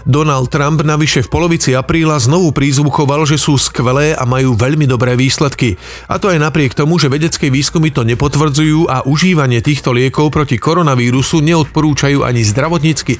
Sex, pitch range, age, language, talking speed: male, 125-150 Hz, 40-59, Slovak, 160 wpm